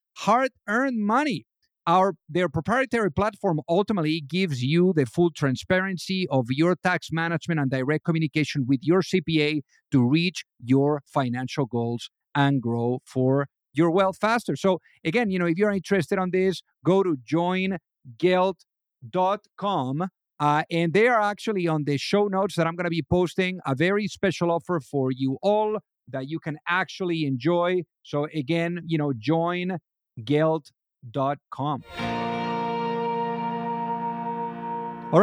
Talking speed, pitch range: 135 wpm, 140-195 Hz